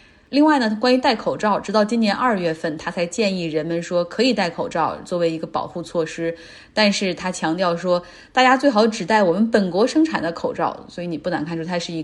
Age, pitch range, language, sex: 30-49, 175-235 Hz, Chinese, female